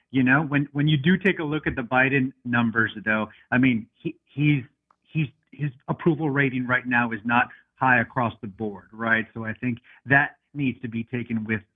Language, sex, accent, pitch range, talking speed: English, male, American, 115-145 Hz, 205 wpm